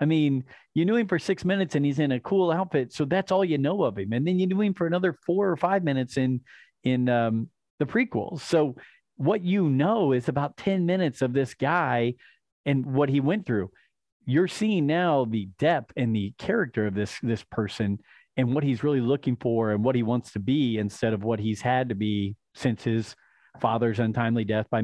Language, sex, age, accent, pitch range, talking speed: English, male, 40-59, American, 115-150 Hz, 215 wpm